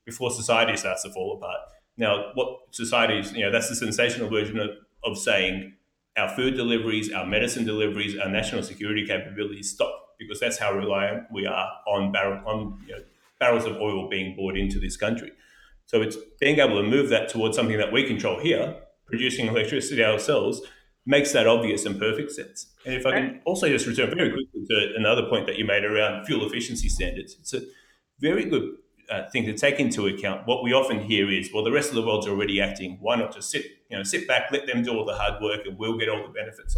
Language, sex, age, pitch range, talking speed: English, male, 30-49, 100-135 Hz, 220 wpm